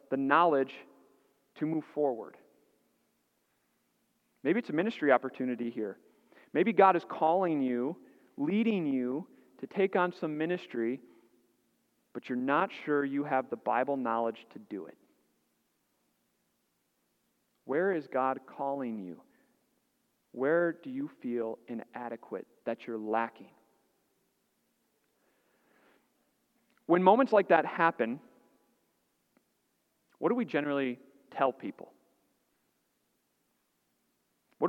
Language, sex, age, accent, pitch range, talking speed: English, male, 40-59, American, 140-235 Hz, 105 wpm